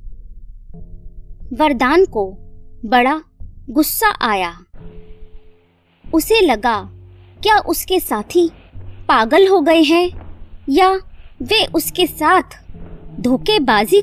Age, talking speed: 20-39, 80 wpm